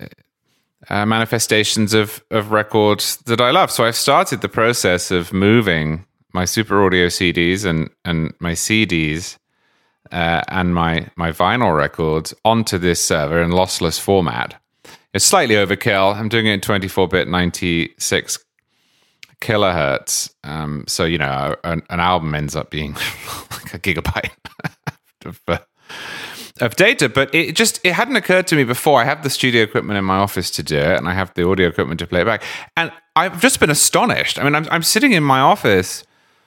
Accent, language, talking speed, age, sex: British, English, 175 wpm, 30-49, male